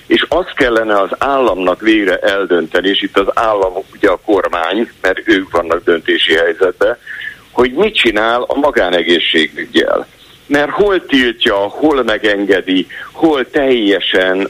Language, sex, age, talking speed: Hungarian, male, 50-69, 130 wpm